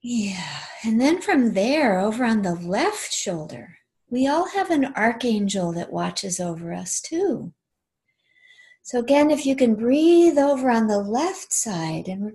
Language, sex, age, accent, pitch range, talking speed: English, female, 50-69, American, 190-255 Hz, 160 wpm